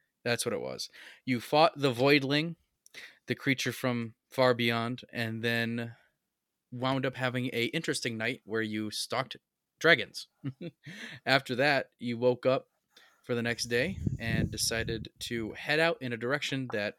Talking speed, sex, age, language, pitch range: 150 wpm, male, 20-39, English, 110-130 Hz